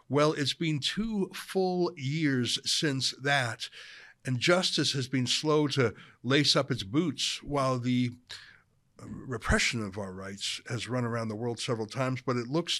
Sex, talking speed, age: male, 160 wpm, 60-79